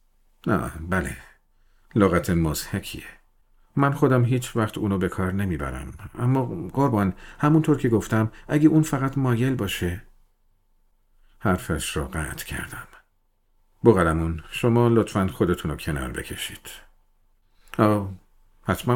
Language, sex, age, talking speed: Persian, male, 50-69, 115 wpm